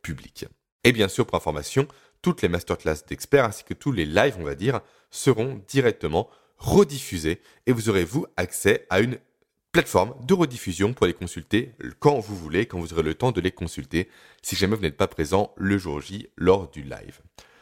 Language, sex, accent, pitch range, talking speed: French, male, French, 100-145 Hz, 195 wpm